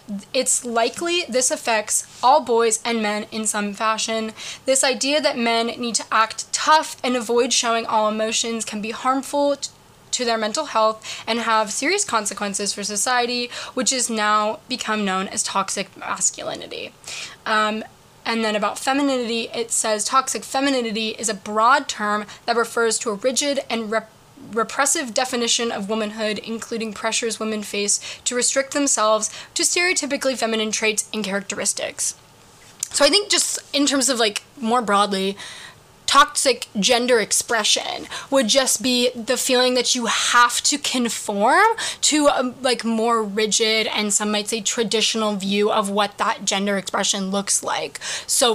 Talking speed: 150 wpm